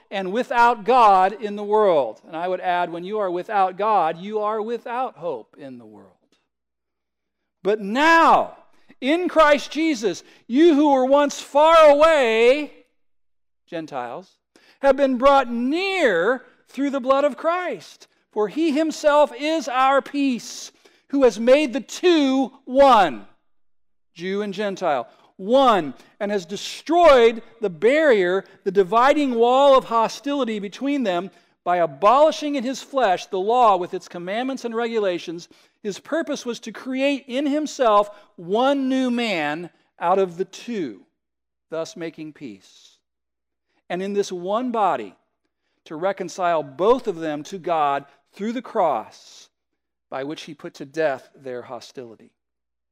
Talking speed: 140 wpm